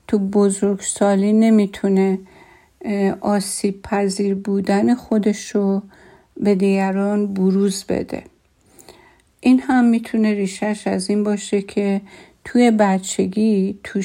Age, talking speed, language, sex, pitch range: 50-69, 95 wpm, Persian, female, 190-210 Hz